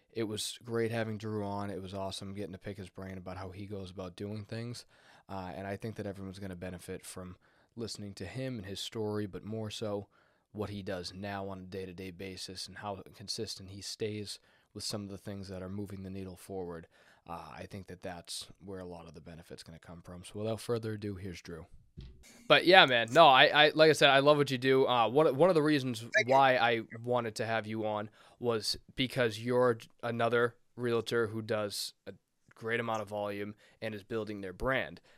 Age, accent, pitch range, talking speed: 20-39, American, 100-120 Hz, 220 wpm